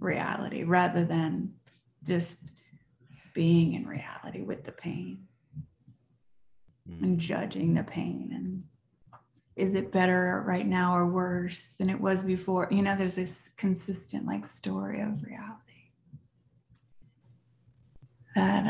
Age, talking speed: 30-49, 115 wpm